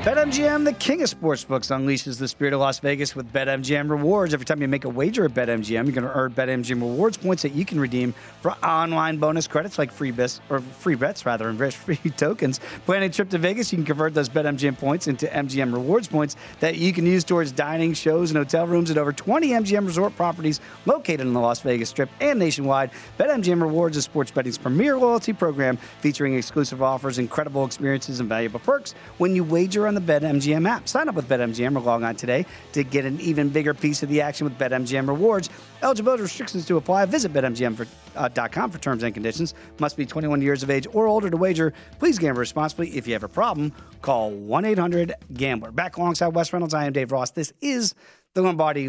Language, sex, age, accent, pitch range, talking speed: English, male, 40-59, American, 130-170 Hz, 210 wpm